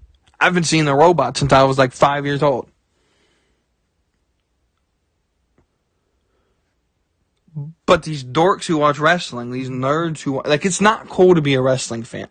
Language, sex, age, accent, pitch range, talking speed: English, male, 20-39, American, 125-160 Hz, 145 wpm